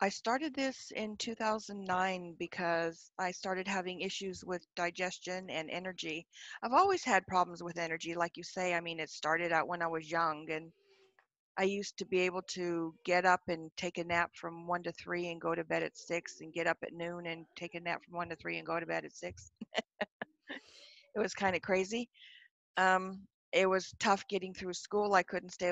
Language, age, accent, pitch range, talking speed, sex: English, 50-69, American, 170-200 Hz, 210 wpm, female